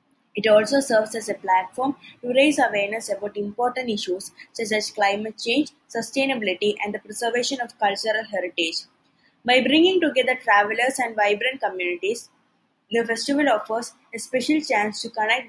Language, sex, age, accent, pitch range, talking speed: English, female, 20-39, Indian, 205-260 Hz, 145 wpm